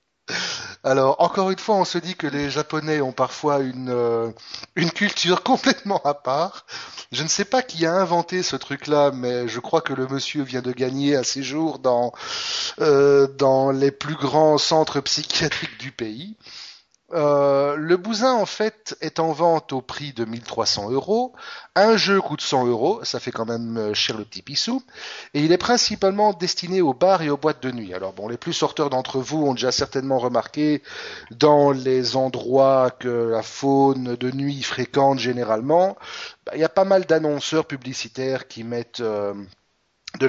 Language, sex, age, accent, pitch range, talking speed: French, male, 30-49, French, 125-170 Hz, 180 wpm